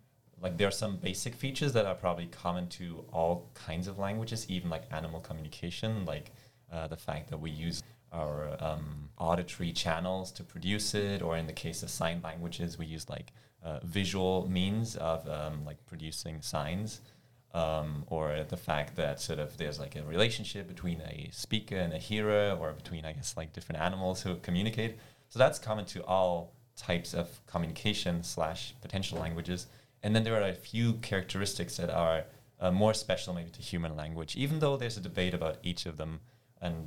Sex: male